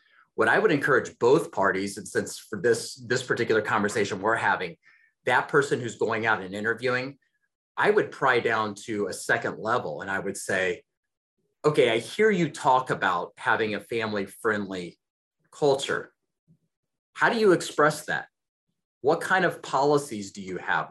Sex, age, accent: male, 30-49, American